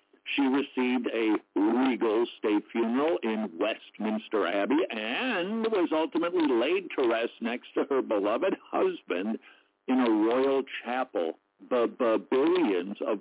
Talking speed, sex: 120 wpm, male